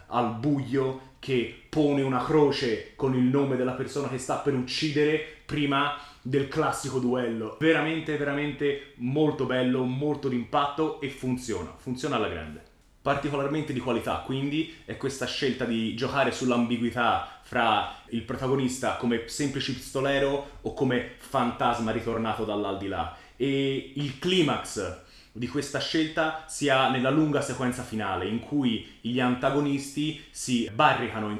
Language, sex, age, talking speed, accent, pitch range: Italian, male, 30-49, 130 wpm, native, 125-150 Hz